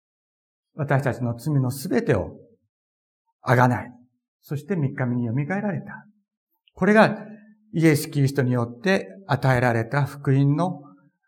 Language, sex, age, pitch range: Japanese, male, 50-69, 130-195 Hz